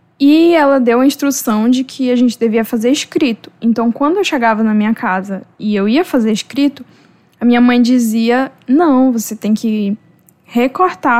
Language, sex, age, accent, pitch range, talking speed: Portuguese, female, 10-29, Brazilian, 230-295 Hz, 175 wpm